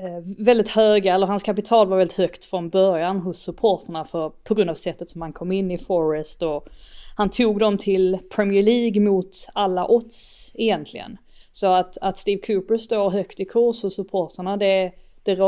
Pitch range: 180-210 Hz